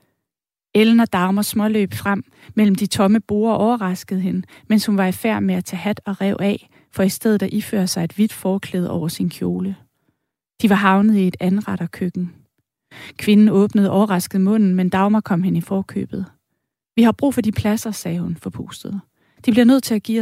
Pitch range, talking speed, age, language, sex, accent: 180-215 Hz, 195 wpm, 30-49, Danish, female, native